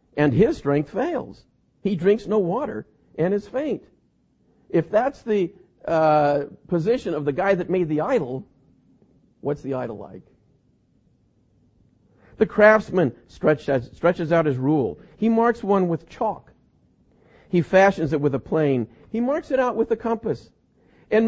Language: English